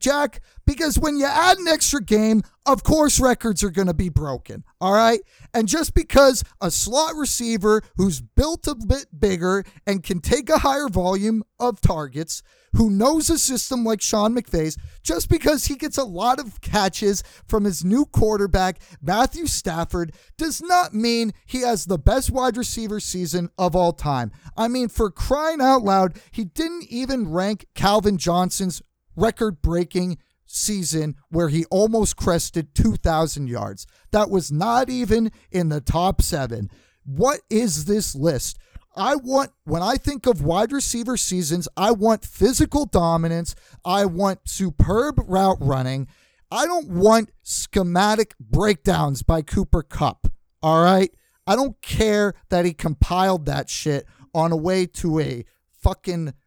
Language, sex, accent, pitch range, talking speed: English, male, American, 165-240 Hz, 155 wpm